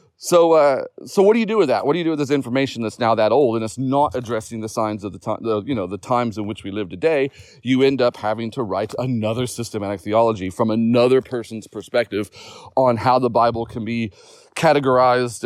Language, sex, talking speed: English, male, 230 wpm